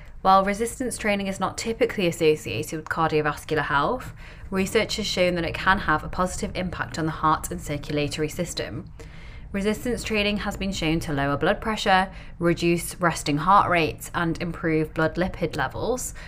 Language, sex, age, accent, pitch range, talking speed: English, female, 20-39, British, 155-195 Hz, 160 wpm